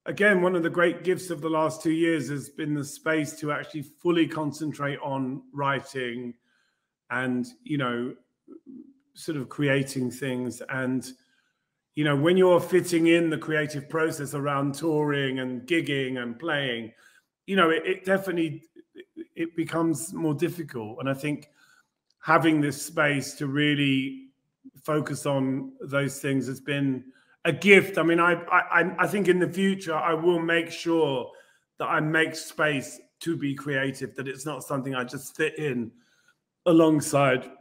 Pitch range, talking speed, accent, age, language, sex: 140-175 Hz, 155 wpm, British, 30-49, Italian, male